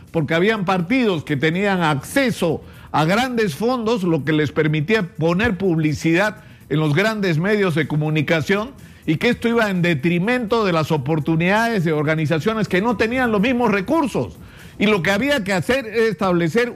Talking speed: 165 wpm